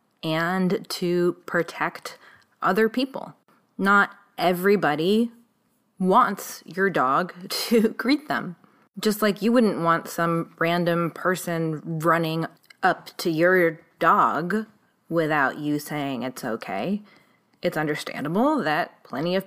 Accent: American